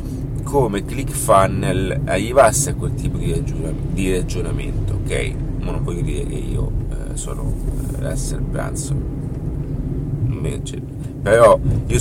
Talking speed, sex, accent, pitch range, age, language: 130 wpm, male, native, 105-140 Hz, 30-49, Italian